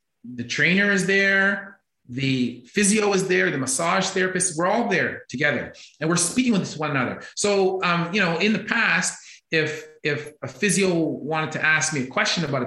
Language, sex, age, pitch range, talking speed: English, male, 30-49, 150-190 Hz, 185 wpm